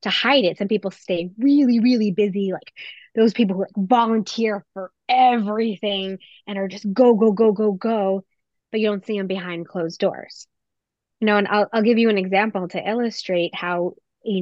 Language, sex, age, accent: English, female, 20-39, American